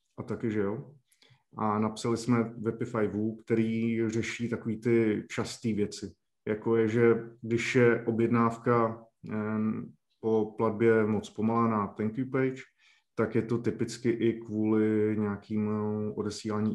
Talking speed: 135 wpm